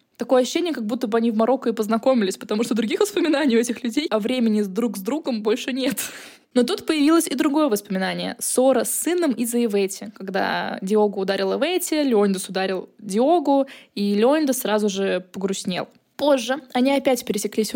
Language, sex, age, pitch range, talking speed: Russian, female, 20-39, 220-280 Hz, 175 wpm